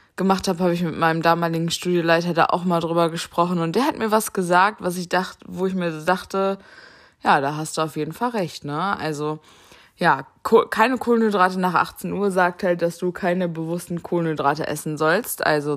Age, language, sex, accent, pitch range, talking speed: 20-39, German, female, German, 160-195 Hz, 200 wpm